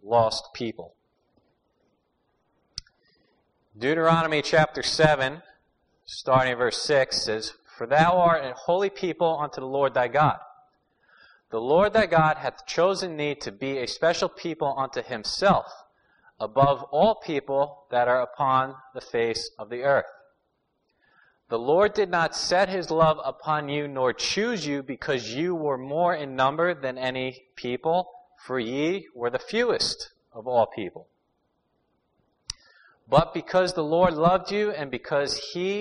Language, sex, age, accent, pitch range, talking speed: English, male, 30-49, American, 130-170 Hz, 140 wpm